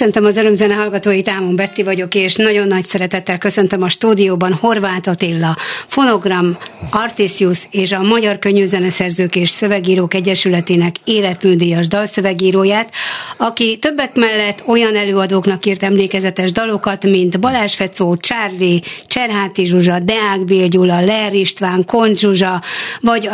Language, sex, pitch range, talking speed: Hungarian, female, 180-210 Hz, 125 wpm